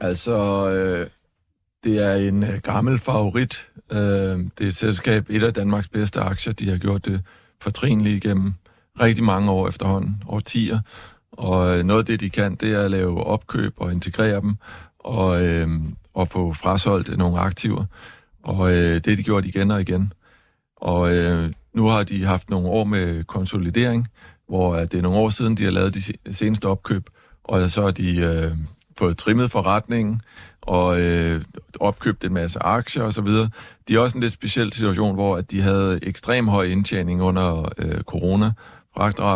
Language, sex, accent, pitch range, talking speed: Danish, male, native, 90-105 Hz, 170 wpm